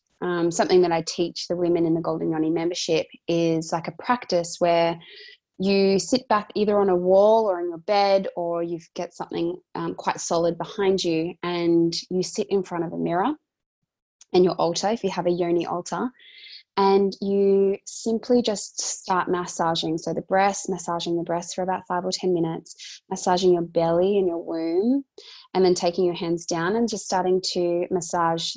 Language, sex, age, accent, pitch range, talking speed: English, female, 20-39, Australian, 175-210 Hz, 185 wpm